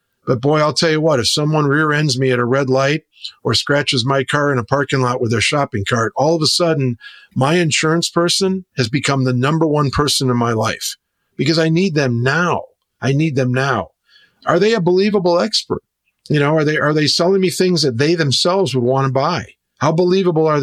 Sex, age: male, 50-69